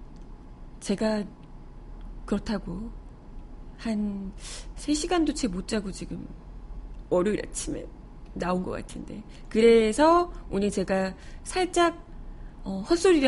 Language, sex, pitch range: Korean, female, 210-310 Hz